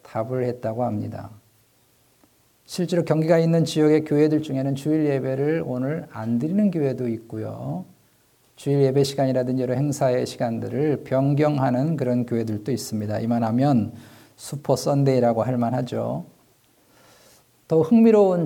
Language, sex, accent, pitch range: Korean, male, native, 125-160 Hz